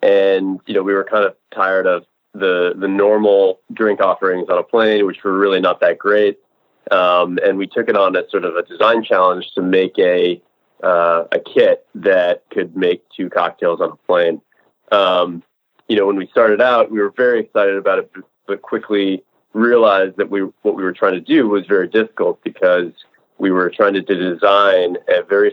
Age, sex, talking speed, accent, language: 30-49, male, 195 wpm, American, English